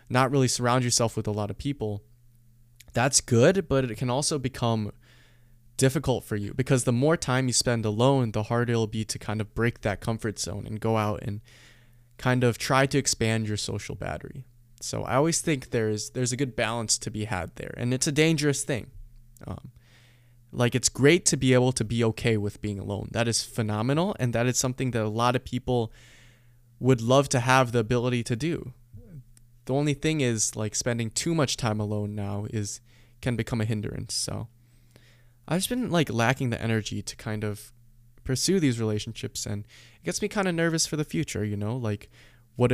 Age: 20-39